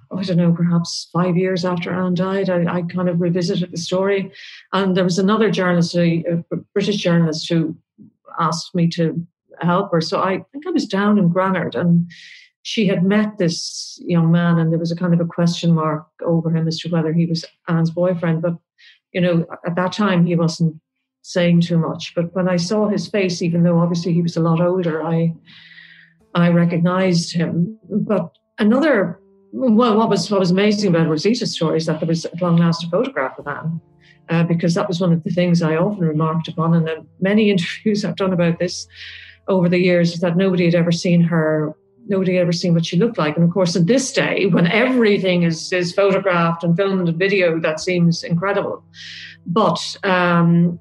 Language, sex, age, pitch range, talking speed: English, female, 50-69, 170-190 Hz, 205 wpm